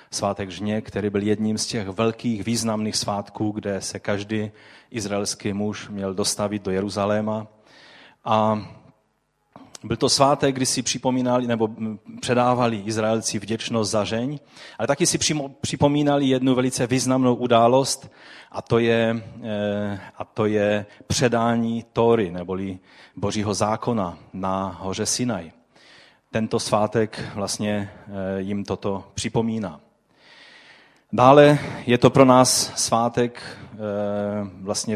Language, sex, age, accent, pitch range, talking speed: Czech, male, 30-49, native, 105-120 Hz, 115 wpm